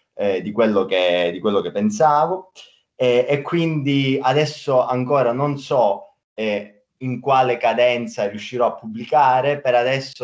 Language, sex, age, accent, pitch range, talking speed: Italian, male, 20-39, native, 100-140 Hz, 140 wpm